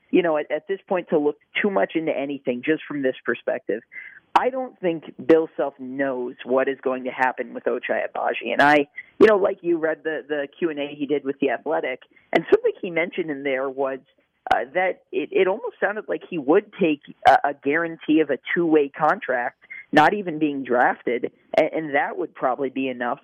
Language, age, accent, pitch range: English, 40-59, American, 135-175 Hz